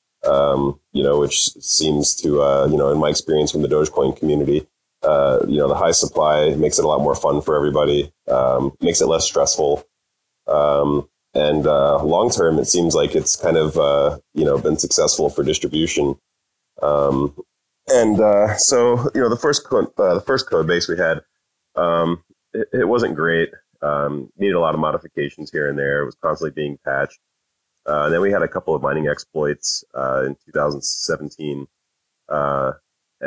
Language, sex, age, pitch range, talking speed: English, male, 30-49, 70-75 Hz, 180 wpm